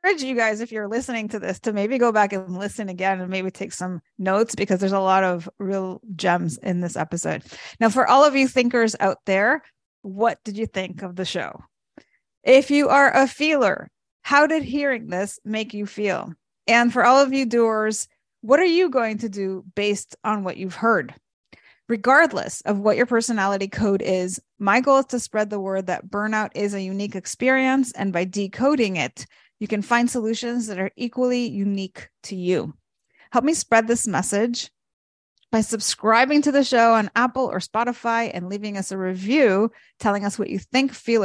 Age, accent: 30-49, American